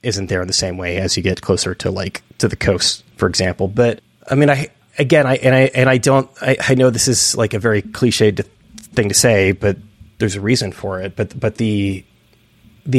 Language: English